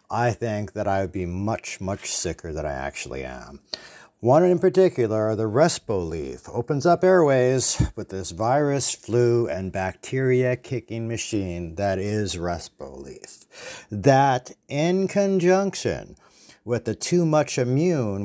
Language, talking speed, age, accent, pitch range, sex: English, 140 wpm, 60-79, American, 100-140 Hz, male